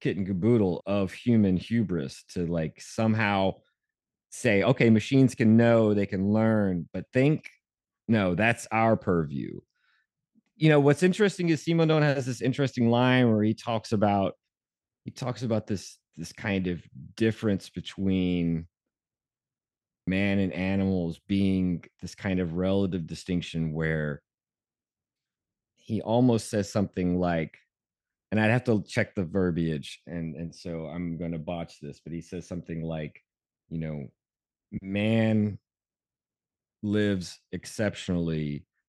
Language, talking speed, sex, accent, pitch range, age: English, 135 wpm, male, American, 85-110 Hz, 30-49